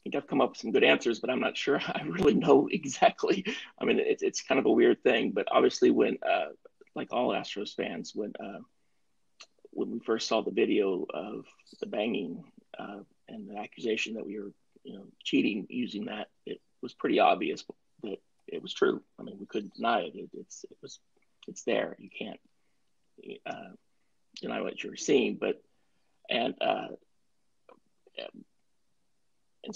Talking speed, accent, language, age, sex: 180 wpm, American, English, 30-49, male